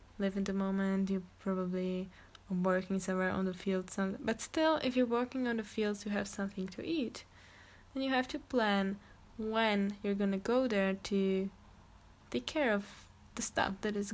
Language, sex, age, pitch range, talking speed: English, female, 10-29, 180-210 Hz, 185 wpm